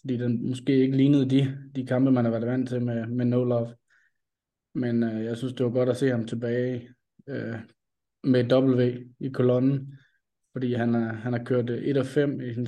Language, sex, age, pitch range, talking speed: Danish, male, 20-39, 115-130 Hz, 190 wpm